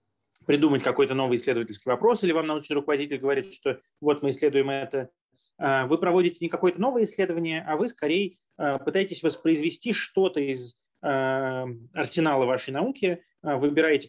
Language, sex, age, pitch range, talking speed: Russian, male, 30-49, 135-170 Hz, 135 wpm